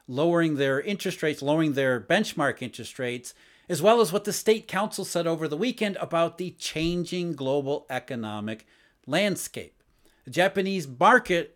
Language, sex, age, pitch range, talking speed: English, male, 50-69, 140-195 Hz, 150 wpm